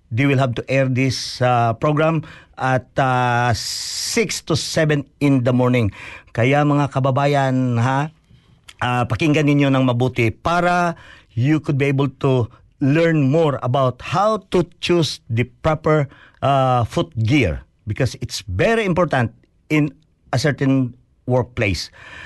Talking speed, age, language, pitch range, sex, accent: 135 wpm, 50-69, Filipino, 130-165 Hz, male, native